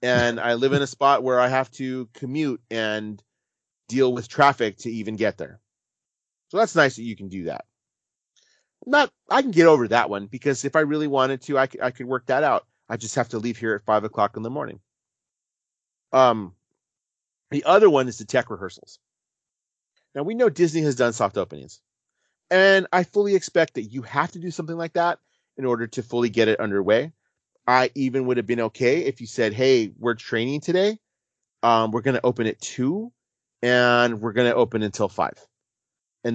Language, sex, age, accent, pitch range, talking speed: English, male, 30-49, American, 110-140 Hz, 200 wpm